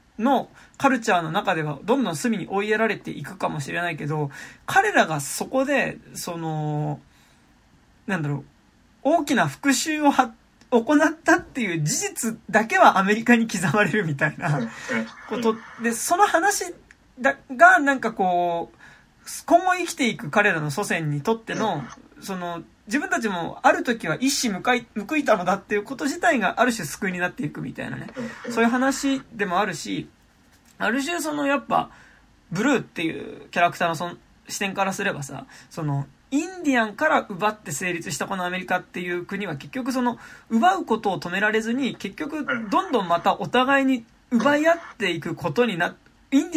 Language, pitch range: Japanese, 185-270 Hz